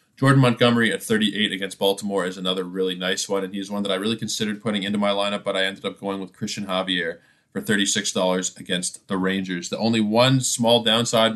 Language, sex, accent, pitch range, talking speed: English, male, American, 95-110 Hz, 210 wpm